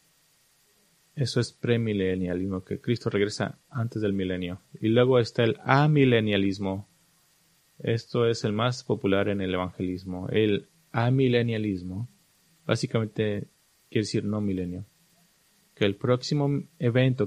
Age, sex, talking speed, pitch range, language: 30-49, male, 115 wpm, 100-130 Hz, English